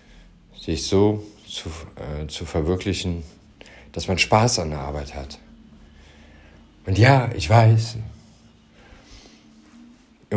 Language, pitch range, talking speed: German, 80-110 Hz, 105 wpm